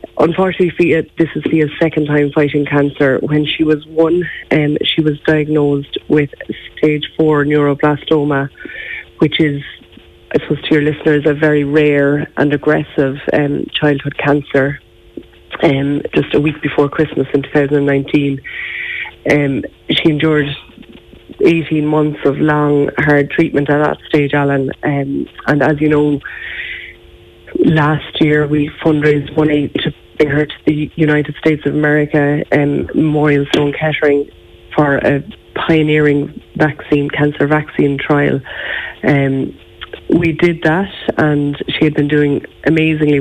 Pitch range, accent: 145-155 Hz, Irish